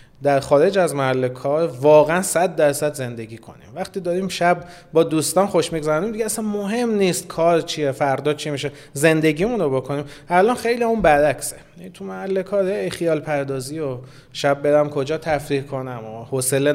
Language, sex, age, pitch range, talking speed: Persian, male, 30-49, 140-190 Hz, 160 wpm